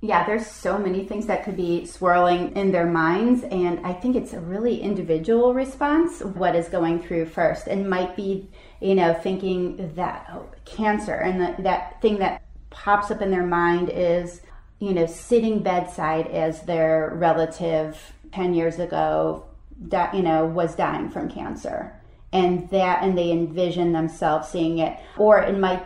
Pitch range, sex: 165-190 Hz, female